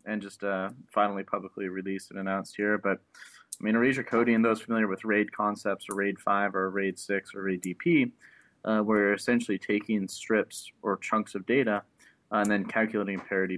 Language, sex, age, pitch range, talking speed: English, male, 20-39, 95-105 Hz, 185 wpm